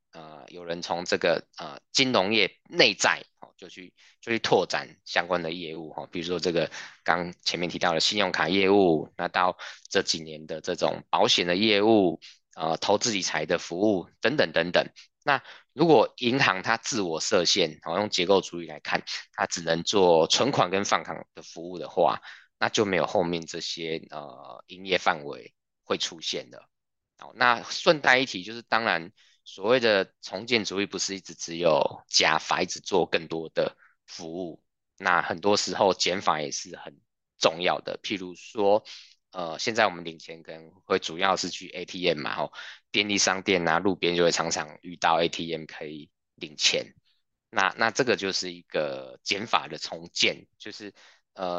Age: 20-39